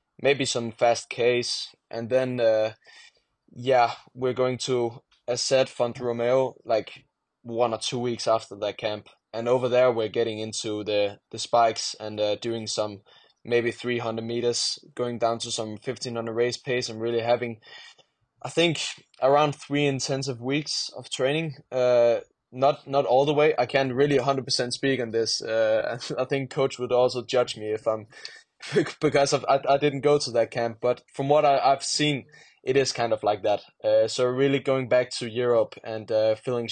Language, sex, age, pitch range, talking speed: English, male, 20-39, 110-135 Hz, 180 wpm